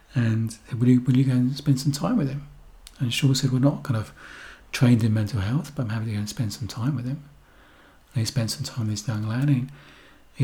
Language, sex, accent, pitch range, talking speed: English, male, British, 115-135 Hz, 245 wpm